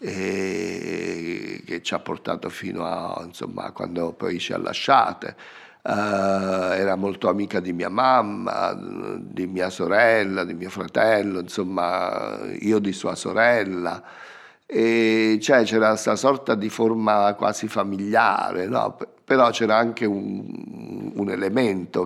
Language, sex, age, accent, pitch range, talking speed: Italian, male, 50-69, native, 95-115 Hz, 130 wpm